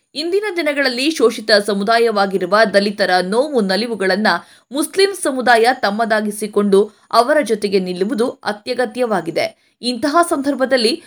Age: 20-39